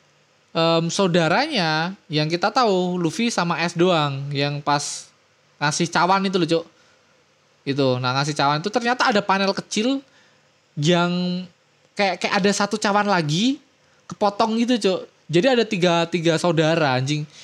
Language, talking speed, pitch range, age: Indonesian, 140 wpm, 145-185 Hz, 20-39